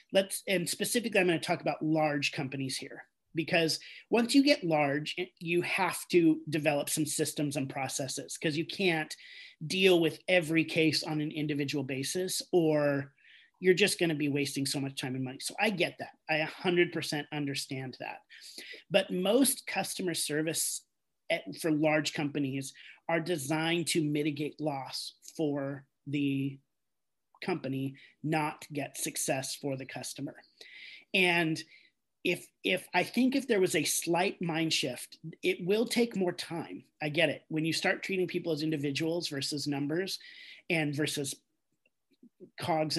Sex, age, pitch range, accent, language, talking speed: male, 30-49, 145-185 Hz, American, English, 155 wpm